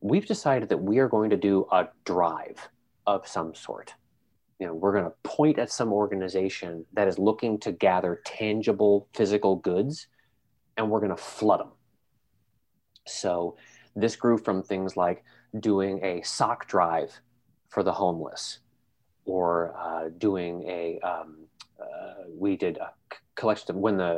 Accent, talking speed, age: American, 155 wpm, 30-49